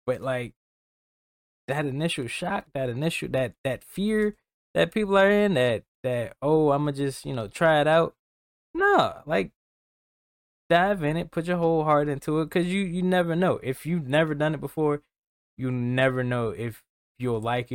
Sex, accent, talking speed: male, American, 185 wpm